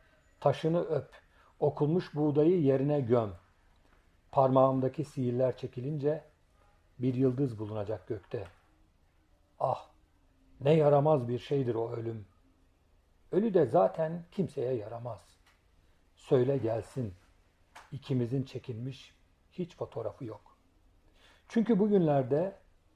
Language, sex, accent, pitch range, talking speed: Turkish, male, native, 90-145 Hz, 90 wpm